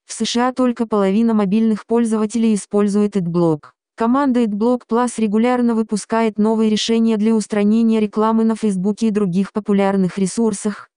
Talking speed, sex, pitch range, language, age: 130 wpm, female, 205-230 Hz, Russian, 20-39